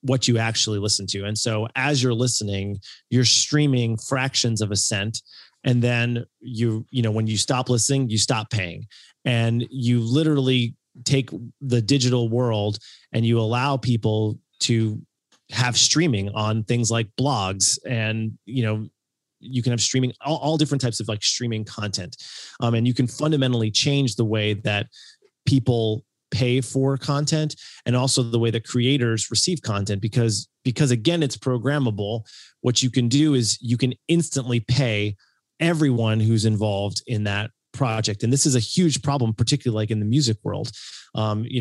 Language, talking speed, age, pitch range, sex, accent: English, 165 wpm, 30-49, 110-130 Hz, male, American